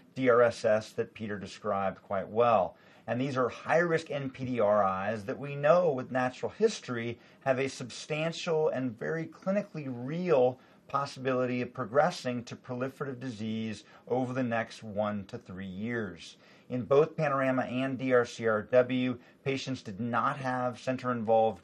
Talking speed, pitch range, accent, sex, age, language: 135 wpm, 115-145 Hz, American, male, 40-59, English